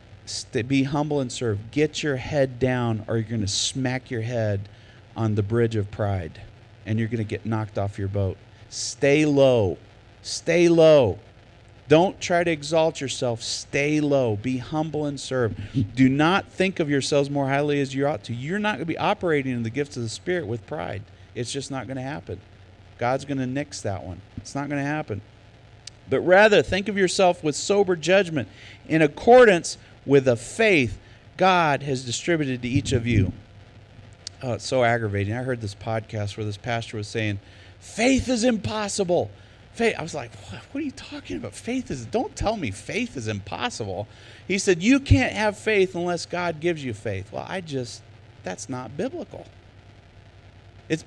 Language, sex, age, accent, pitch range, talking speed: English, male, 40-59, American, 105-160 Hz, 185 wpm